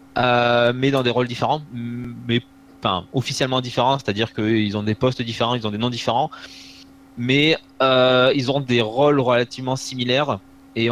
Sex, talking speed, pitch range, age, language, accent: male, 165 wpm, 110-130 Hz, 20-39, French, French